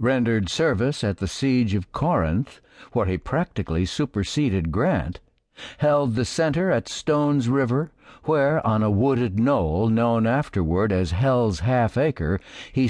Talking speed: 140 wpm